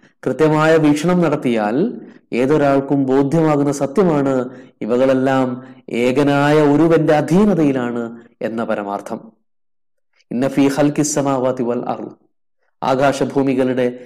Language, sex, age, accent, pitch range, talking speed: Malayalam, male, 20-39, native, 125-150 Hz, 55 wpm